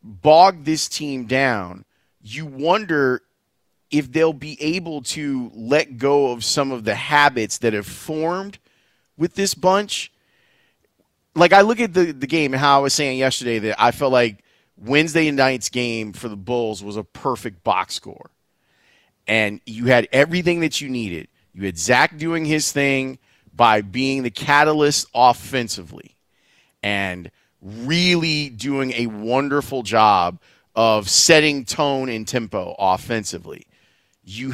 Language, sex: English, male